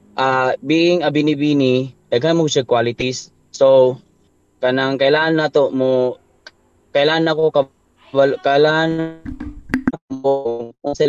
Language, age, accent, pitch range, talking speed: Filipino, 20-39, native, 120-140 Hz, 110 wpm